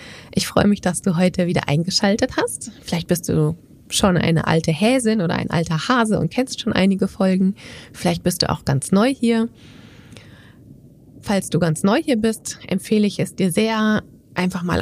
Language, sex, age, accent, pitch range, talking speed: German, female, 20-39, German, 160-210 Hz, 180 wpm